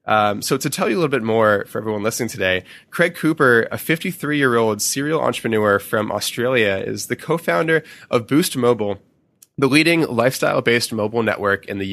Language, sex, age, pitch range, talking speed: English, male, 20-39, 105-135 Hz, 170 wpm